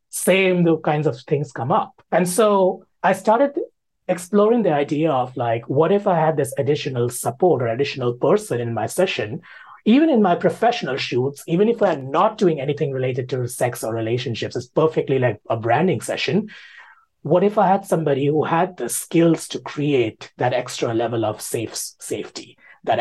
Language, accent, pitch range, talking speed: English, Indian, 125-180 Hz, 180 wpm